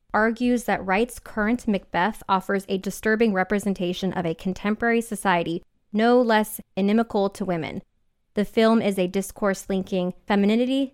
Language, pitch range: English, 185-215 Hz